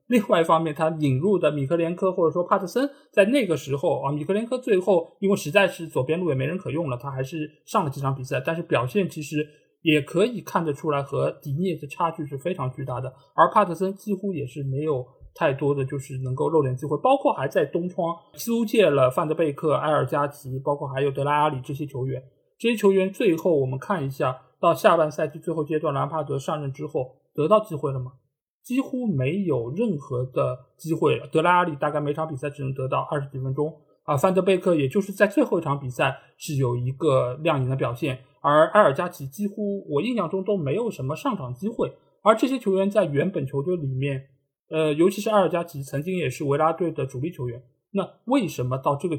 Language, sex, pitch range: Chinese, male, 140-185 Hz